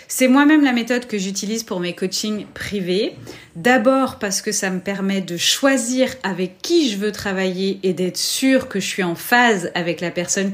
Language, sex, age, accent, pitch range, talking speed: French, female, 30-49, French, 180-225 Hz, 195 wpm